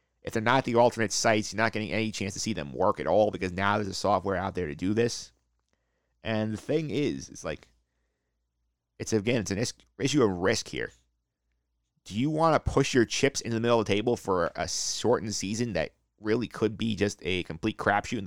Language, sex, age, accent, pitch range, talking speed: English, male, 30-49, American, 90-115 Hz, 220 wpm